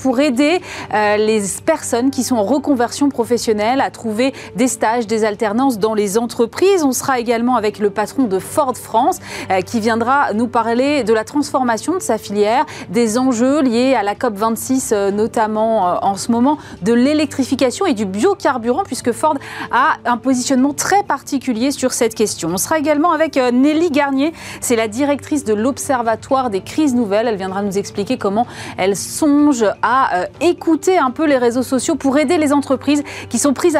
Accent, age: French, 30-49